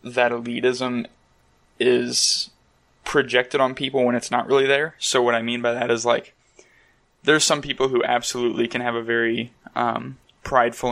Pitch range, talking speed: 115-125 Hz, 165 wpm